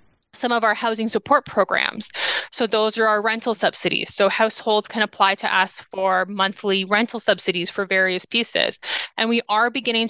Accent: American